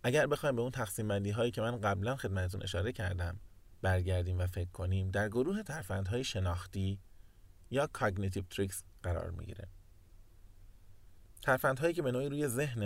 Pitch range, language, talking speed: 95-120 Hz, Persian, 150 wpm